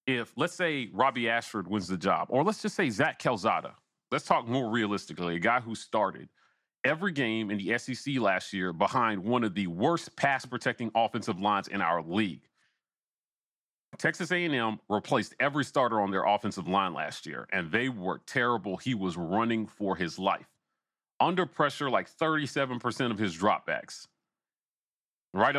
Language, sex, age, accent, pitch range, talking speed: English, male, 40-59, American, 110-165 Hz, 160 wpm